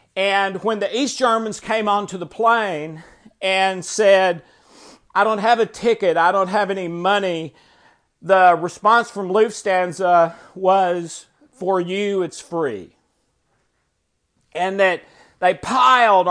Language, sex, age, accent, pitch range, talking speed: English, male, 50-69, American, 175-215 Hz, 125 wpm